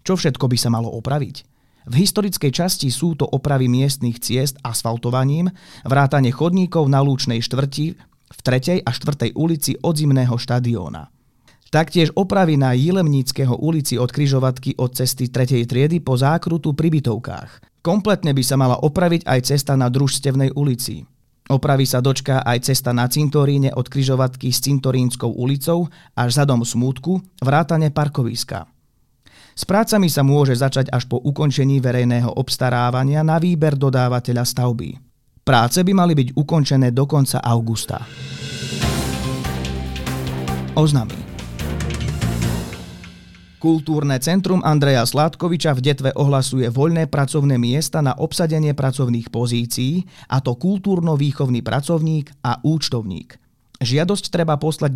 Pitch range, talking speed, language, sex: 125-155 Hz, 125 wpm, Slovak, male